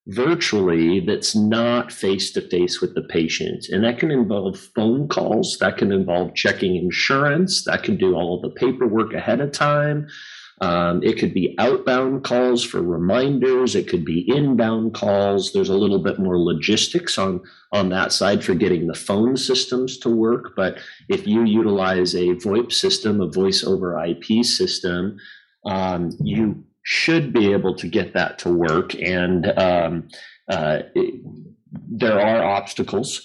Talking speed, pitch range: 155 wpm, 95-125 Hz